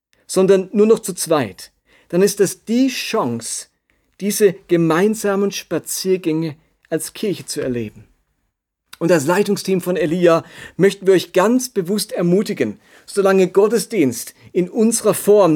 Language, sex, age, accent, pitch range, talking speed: German, male, 40-59, German, 155-200 Hz, 125 wpm